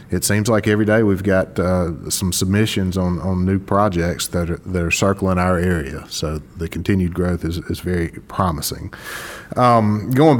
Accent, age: American, 30-49